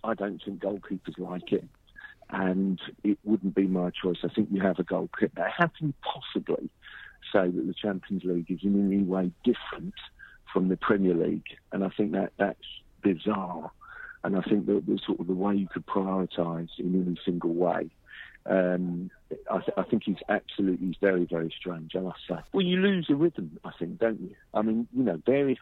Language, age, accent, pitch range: English, 50-69, British, 90-105 Hz